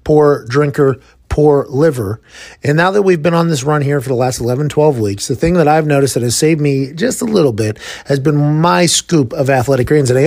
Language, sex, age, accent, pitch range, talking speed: English, male, 40-59, American, 135-170 Hz, 240 wpm